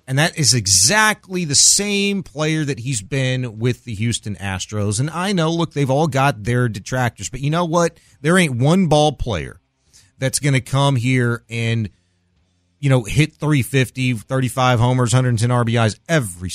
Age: 40-59